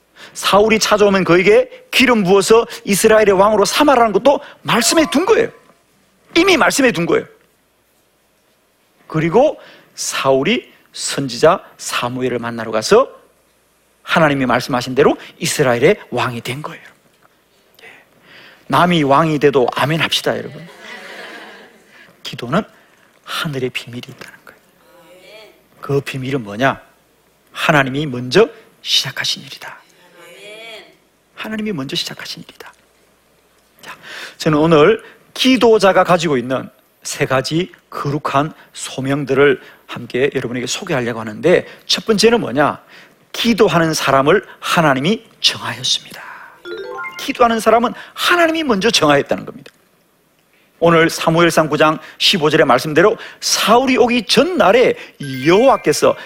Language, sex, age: Korean, male, 40-59